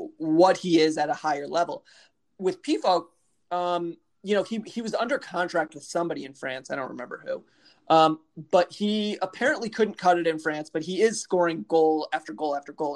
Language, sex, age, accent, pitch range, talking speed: English, male, 20-39, American, 160-190 Hz, 200 wpm